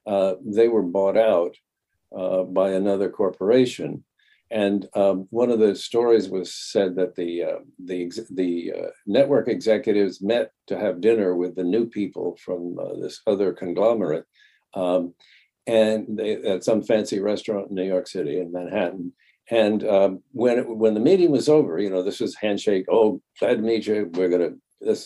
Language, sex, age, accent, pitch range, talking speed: English, male, 60-79, American, 95-120 Hz, 175 wpm